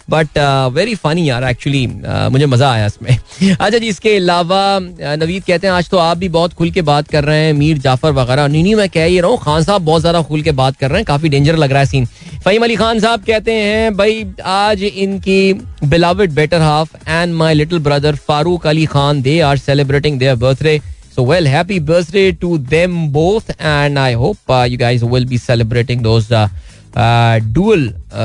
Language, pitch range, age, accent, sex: Hindi, 135-170 Hz, 20-39, native, male